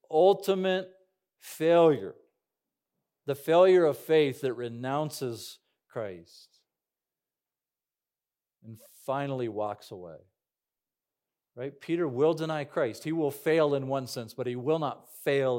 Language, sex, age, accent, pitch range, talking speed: English, male, 40-59, American, 120-165 Hz, 110 wpm